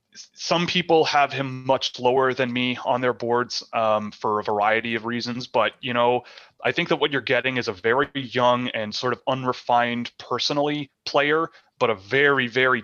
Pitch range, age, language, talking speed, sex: 110-130 Hz, 20-39, English, 185 wpm, male